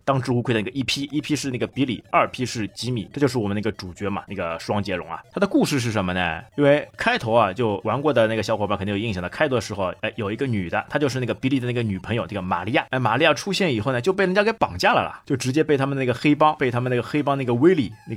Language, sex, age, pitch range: Chinese, male, 20-39, 105-145 Hz